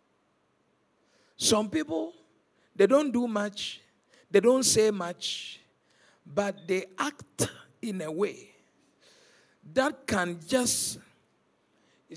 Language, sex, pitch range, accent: English, male, 200-285 Hz, Nigerian